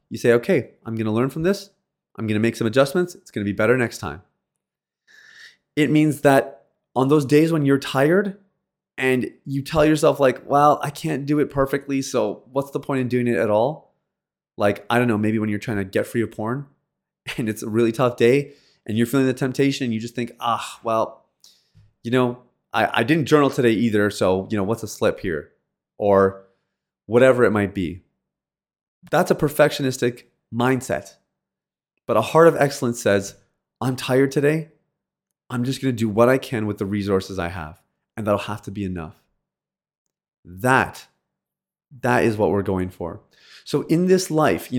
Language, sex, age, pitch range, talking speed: English, male, 30-49, 110-140 Hz, 195 wpm